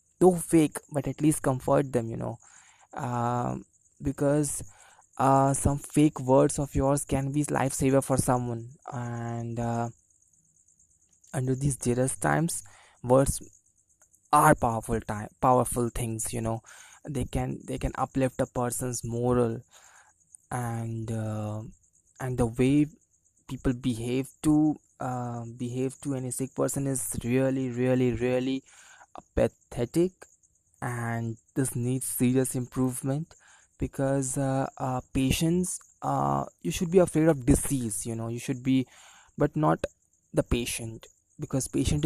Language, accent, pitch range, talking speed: English, Indian, 115-135 Hz, 130 wpm